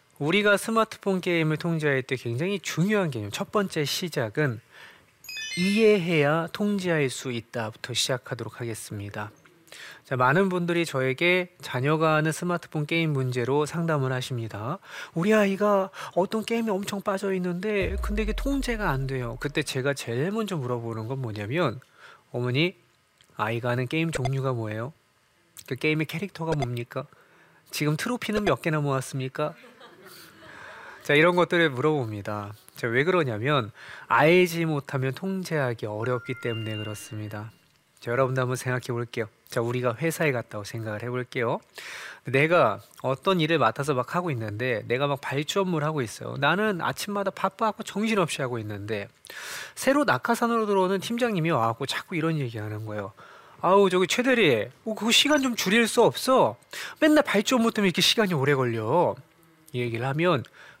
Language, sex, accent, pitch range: Korean, male, native, 125-190 Hz